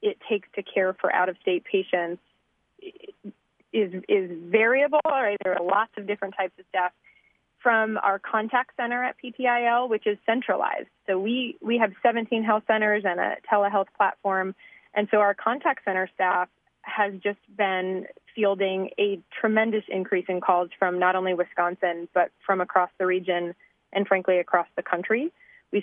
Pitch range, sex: 185-220 Hz, female